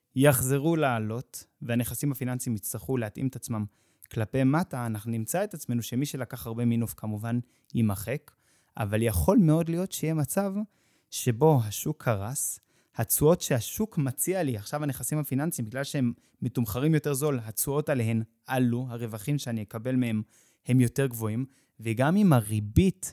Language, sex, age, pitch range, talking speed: Hebrew, male, 20-39, 120-150 Hz, 140 wpm